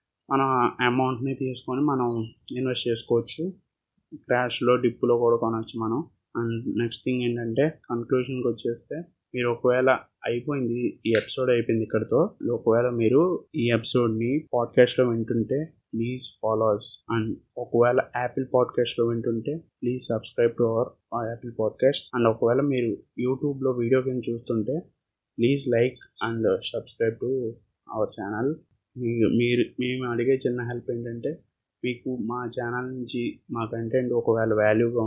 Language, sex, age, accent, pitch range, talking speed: Telugu, male, 20-39, native, 110-125 Hz, 125 wpm